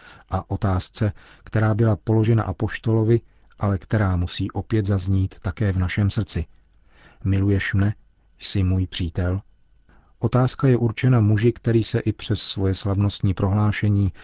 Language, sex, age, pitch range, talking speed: Czech, male, 40-59, 95-110 Hz, 130 wpm